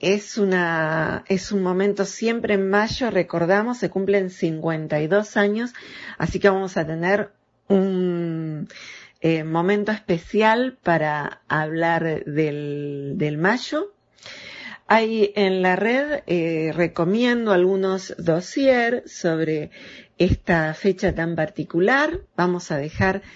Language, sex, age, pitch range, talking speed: Spanish, female, 40-59, 160-205 Hz, 110 wpm